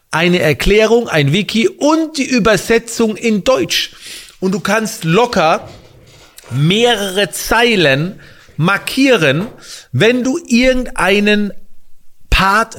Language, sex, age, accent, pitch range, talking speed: German, male, 40-59, German, 140-200 Hz, 95 wpm